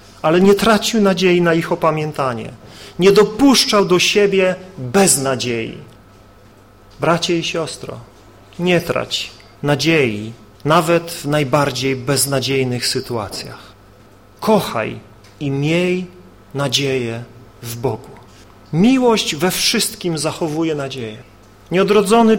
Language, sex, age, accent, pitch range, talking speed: Polish, male, 40-59, native, 120-190 Hz, 95 wpm